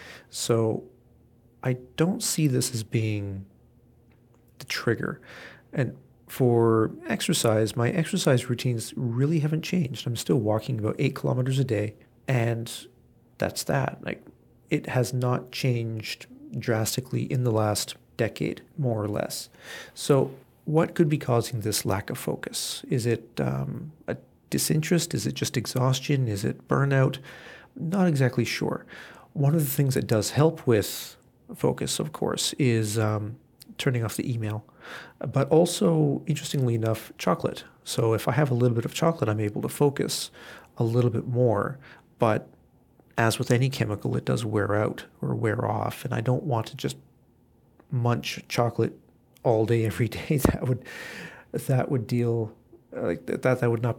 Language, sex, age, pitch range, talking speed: English, male, 40-59, 115-135 Hz, 155 wpm